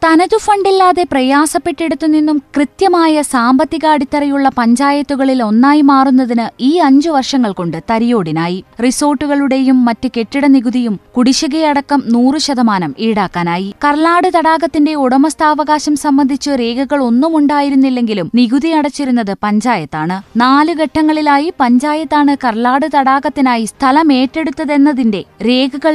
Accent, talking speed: native, 85 wpm